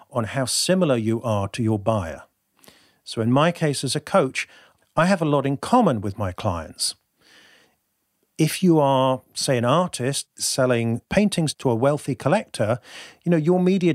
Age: 40-59